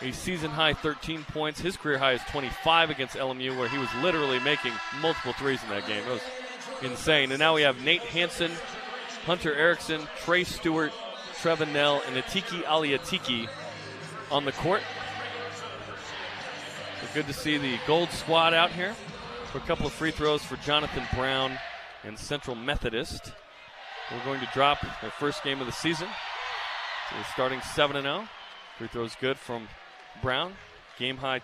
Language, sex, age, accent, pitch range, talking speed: English, male, 30-49, American, 130-165 Hz, 160 wpm